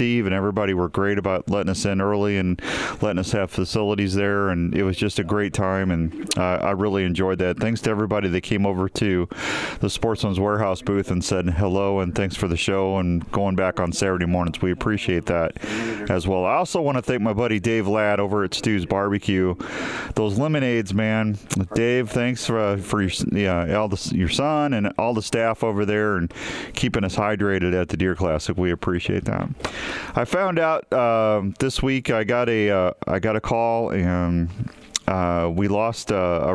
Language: English